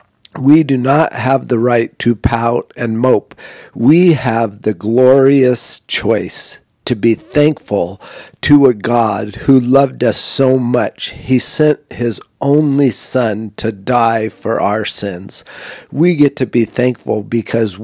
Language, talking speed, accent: English, 140 wpm, American